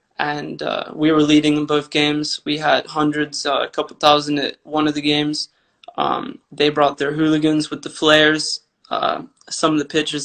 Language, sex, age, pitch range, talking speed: English, male, 20-39, 150-160 Hz, 195 wpm